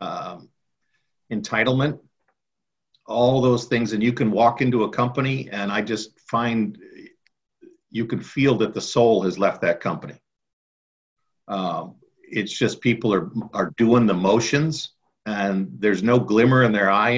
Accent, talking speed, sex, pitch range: American, 145 wpm, male, 105-130 Hz